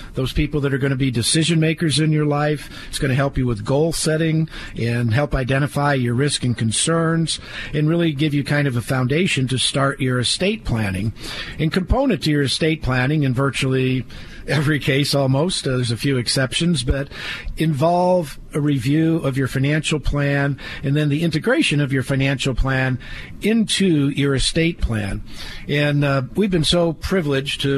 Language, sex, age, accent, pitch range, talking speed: English, male, 50-69, American, 120-145 Hz, 180 wpm